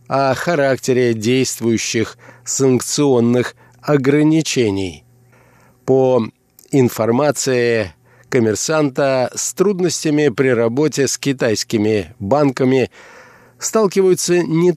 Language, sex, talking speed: Russian, male, 70 wpm